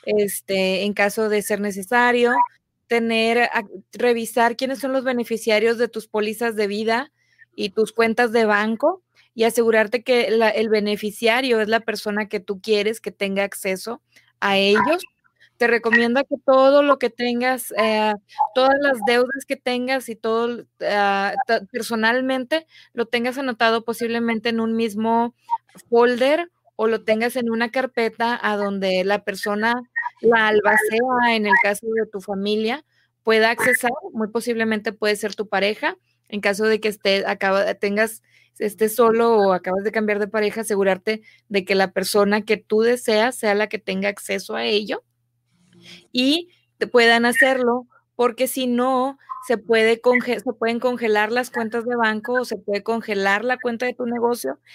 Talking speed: 160 wpm